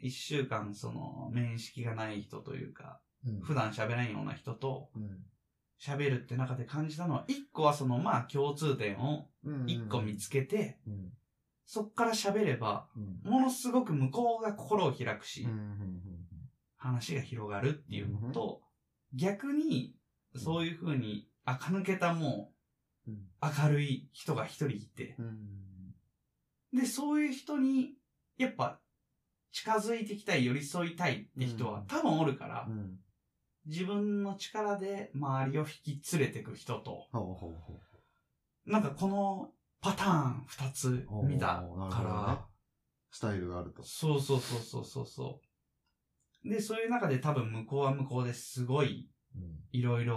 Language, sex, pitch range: Japanese, male, 110-155 Hz